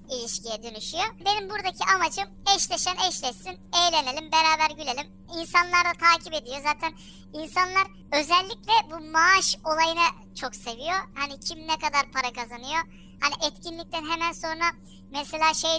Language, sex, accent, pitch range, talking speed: Turkish, male, native, 275-335 Hz, 130 wpm